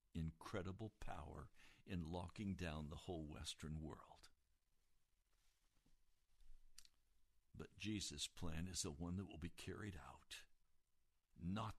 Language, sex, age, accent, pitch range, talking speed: English, male, 60-79, American, 90-135 Hz, 105 wpm